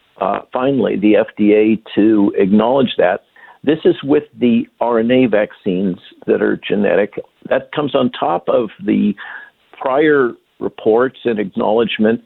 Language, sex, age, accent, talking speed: English, male, 50-69, American, 125 wpm